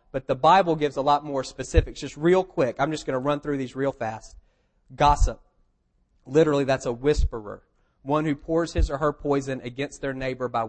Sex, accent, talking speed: male, American, 200 wpm